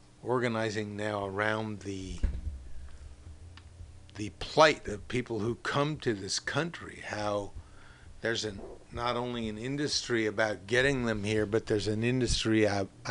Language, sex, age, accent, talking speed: English, male, 60-79, American, 135 wpm